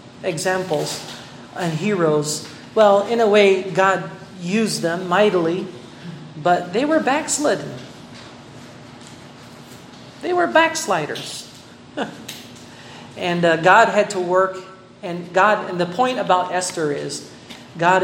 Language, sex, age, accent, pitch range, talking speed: Filipino, male, 40-59, American, 160-210 Hz, 110 wpm